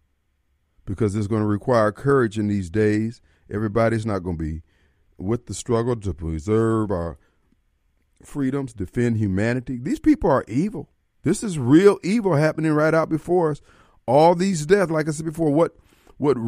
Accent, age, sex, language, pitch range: American, 40-59, male, Japanese, 95-135 Hz